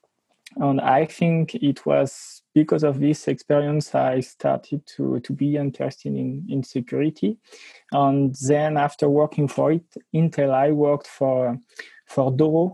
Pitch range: 135-150 Hz